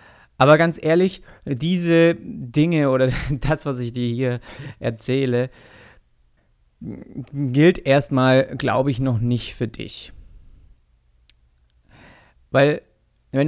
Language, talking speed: German, 100 wpm